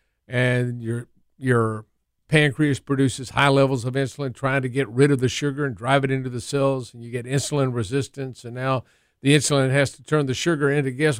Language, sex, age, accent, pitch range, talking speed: English, male, 50-69, American, 120-140 Hz, 205 wpm